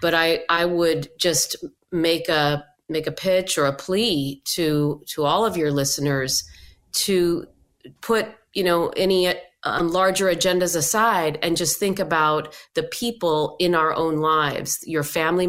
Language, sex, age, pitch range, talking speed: English, female, 40-59, 155-190 Hz, 155 wpm